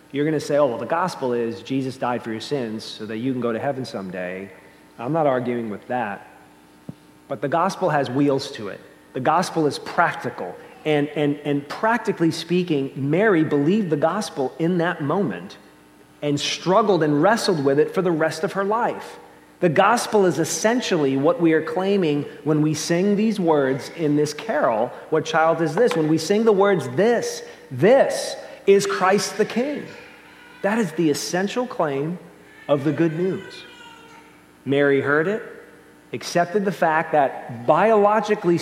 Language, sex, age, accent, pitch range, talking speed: English, male, 40-59, American, 130-185 Hz, 170 wpm